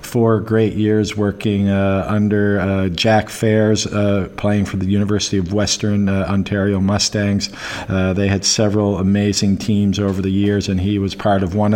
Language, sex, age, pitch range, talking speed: English, male, 50-69, 100-110 Hz, 175 wpm